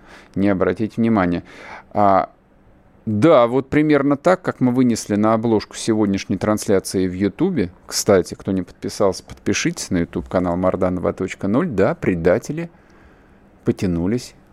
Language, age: Russian, 50-69